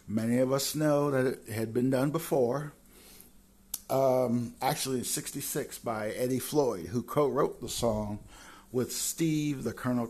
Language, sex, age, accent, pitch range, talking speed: English, male, 50-69, American, 115-135 Hz, 150 wpm